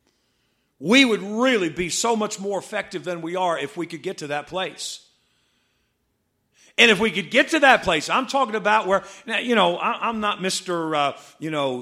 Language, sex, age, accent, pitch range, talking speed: English, male, 50-69, American, 155-230 Hz, 205 wpm